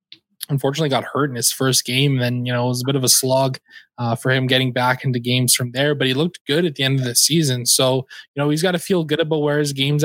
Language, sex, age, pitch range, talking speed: English, male, 20-39, 125-145 Hz, 285 wpm